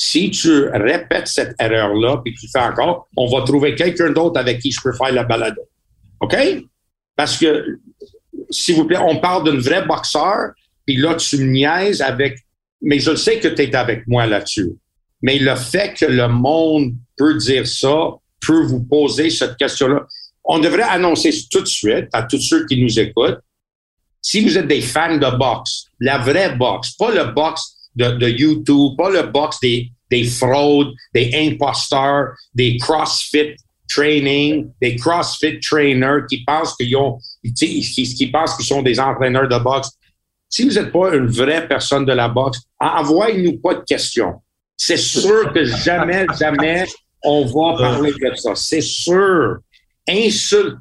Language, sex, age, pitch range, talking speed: French, male, 60-79, 125-160 Hz, 170 wpm